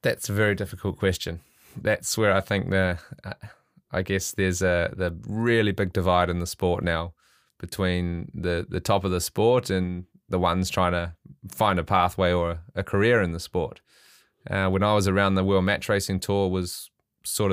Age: 20-39